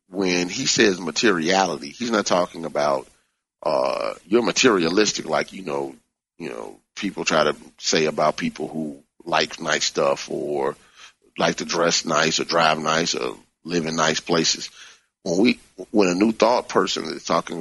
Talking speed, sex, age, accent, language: 165 wpm, male, 40-59, American, English